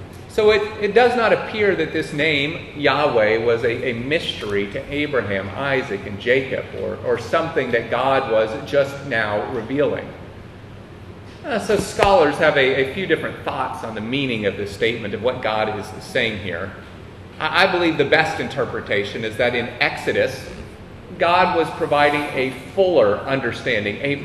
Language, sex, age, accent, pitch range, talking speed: English, male, 40-59, American, 115-150 Hz, 165 wpm